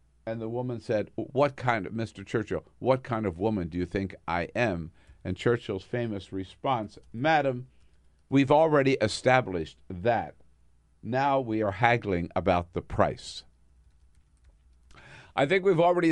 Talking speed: 140 wpm